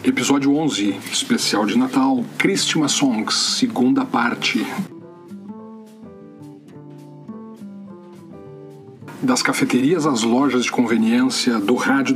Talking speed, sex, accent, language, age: 85 wpm, male, Brazilian, Portuguese, 40-59